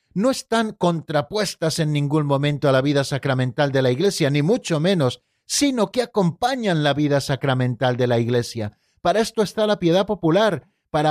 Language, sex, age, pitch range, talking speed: Spanish, male, 50-69, 135-190 Hz, 175 wpm